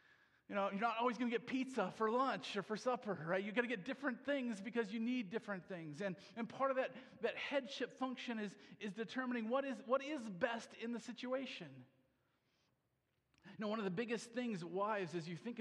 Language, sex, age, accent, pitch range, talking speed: English, male, 40-59, American, 195-255 Hz, 215 wpm